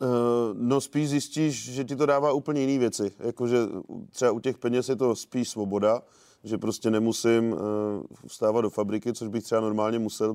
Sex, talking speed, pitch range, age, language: male, 175 wpm, 105-120 Hz, 30-49, Czech